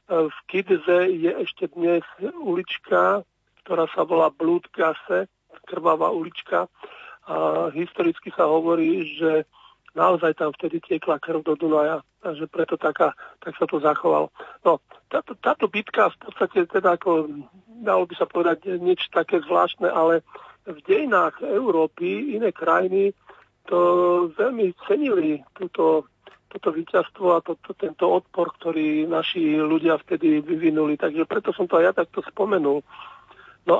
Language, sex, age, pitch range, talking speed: Slovak, male, 50-69, 160-190 Hz, 135 wpm